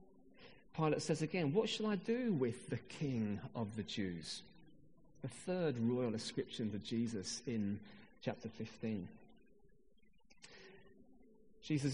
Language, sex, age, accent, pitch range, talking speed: English, male, 40-59, British, 125-205 Hz, 115 wpm